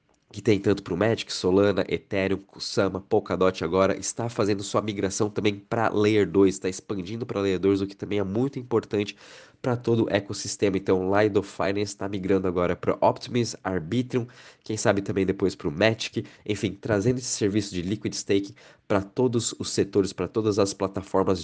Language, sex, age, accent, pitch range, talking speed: Portuguese, male, 20-39, Brazilian, 95-110 Hz, 180 wpm